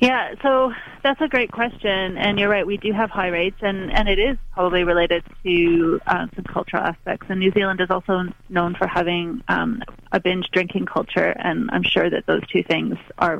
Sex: female